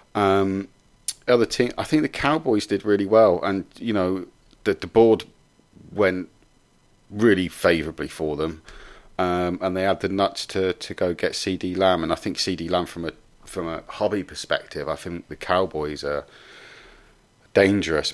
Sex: male